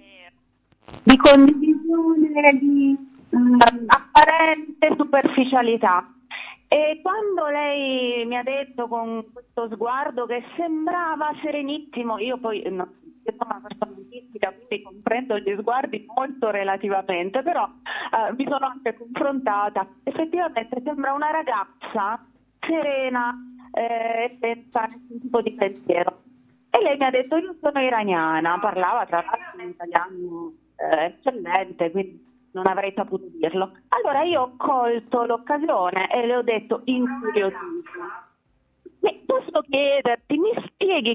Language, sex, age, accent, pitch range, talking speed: Italian, female, 30-49, native, 205-285 Hz, 125 wpm